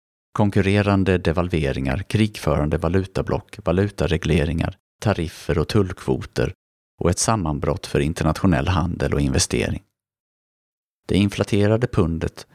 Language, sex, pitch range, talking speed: Swedish, male, 75-100 Hz, 90 wpm